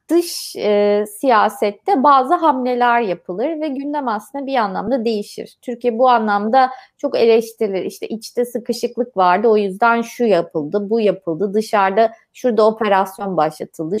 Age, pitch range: 30-49, 205-255 Hz